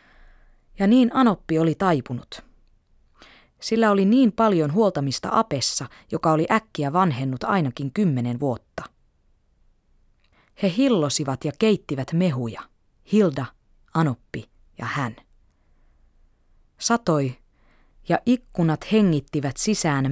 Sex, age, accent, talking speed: female, 20-39, native, 95 wpm